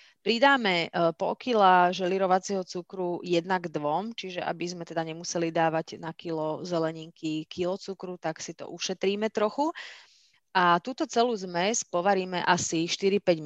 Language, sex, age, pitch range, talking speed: Slovak, female, 30-49, 170-195 Hz, 135 wpm